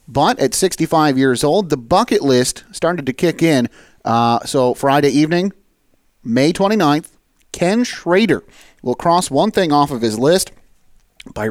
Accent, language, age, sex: American, English, 30-49, male